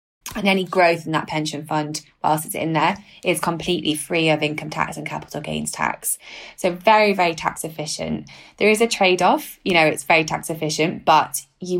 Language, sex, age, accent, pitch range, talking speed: English, female, 20-39, British, 155-185 Hz, 200 wpm